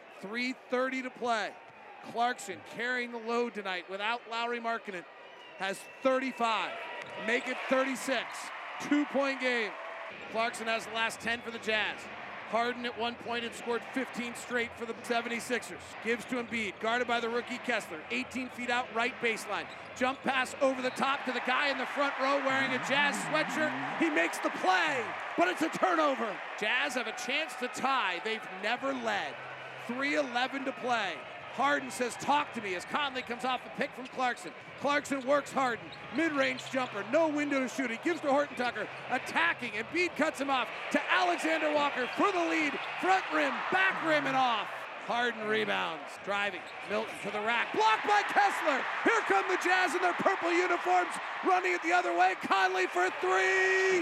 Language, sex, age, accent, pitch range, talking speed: English, male, 40-59, American, 230-285 Hz, 175 wpm